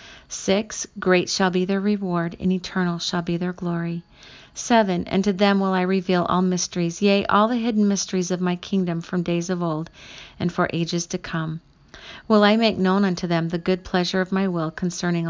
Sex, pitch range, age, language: female, 170-195 Hz, 50-69, English